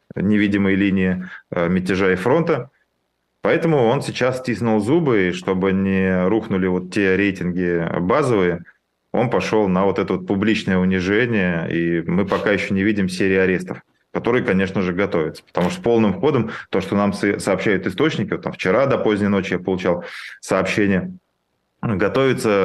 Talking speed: 150 wpm